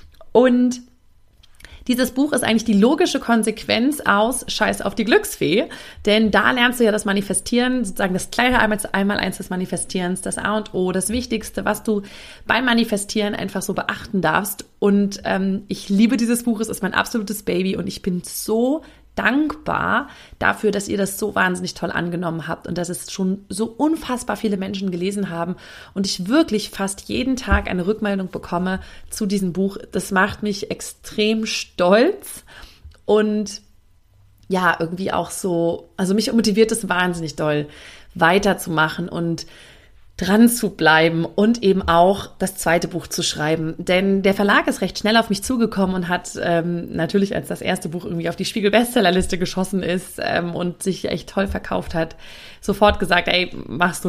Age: 30-49